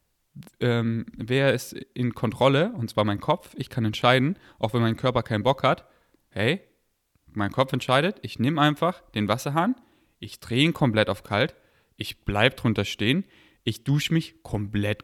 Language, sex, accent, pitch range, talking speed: German, male, German, 115-165 Hz, 170 wpm